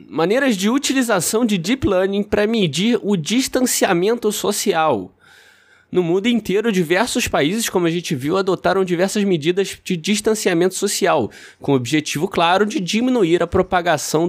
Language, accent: Portuguese, Brazilian